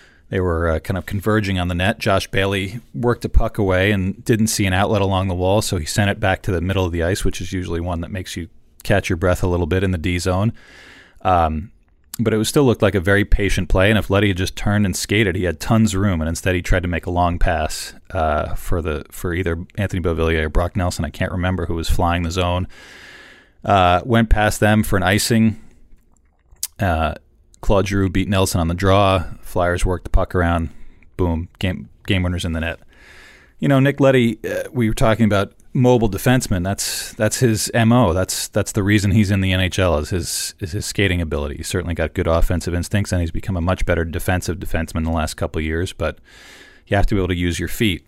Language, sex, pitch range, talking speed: English, male, 85-105 Hz, 230 wpm